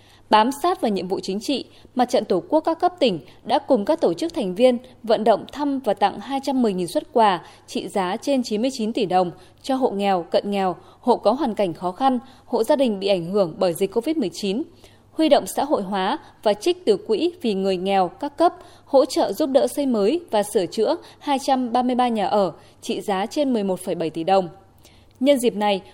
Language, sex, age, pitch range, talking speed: Vietnamese, female, 20-39, 195-275 Hz, 210 wpm